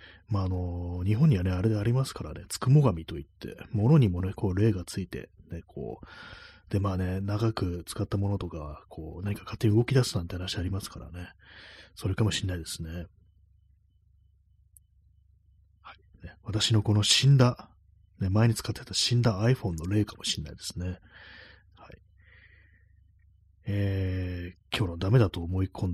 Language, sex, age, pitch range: Japanese, male, 30-49, 90-110 Hz